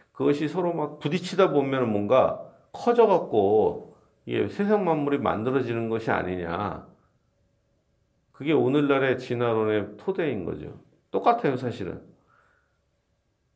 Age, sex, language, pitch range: 50-69, male, Korean, 105-150 Hz